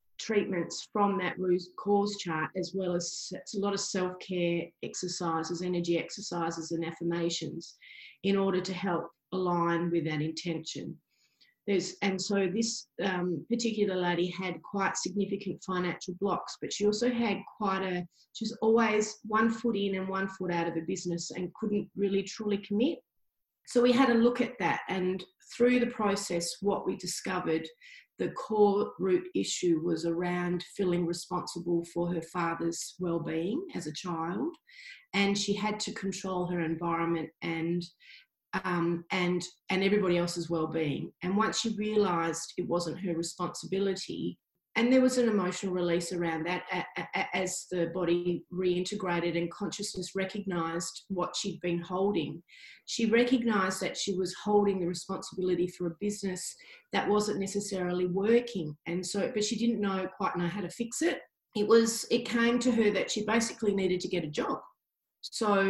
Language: English